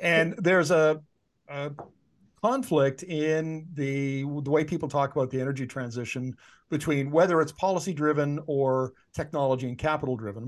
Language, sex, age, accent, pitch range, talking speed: English, male, 50-69, American, 140-175 Hz, 130 wpm